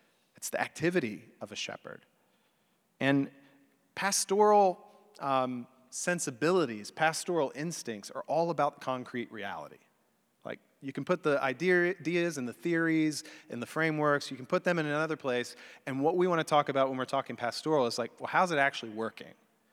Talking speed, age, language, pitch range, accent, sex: 165 wpm, 30-49, English, 120-155 Hz, American, male